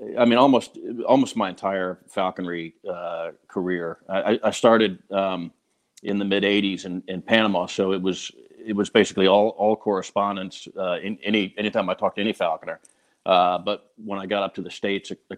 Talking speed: 195 wpm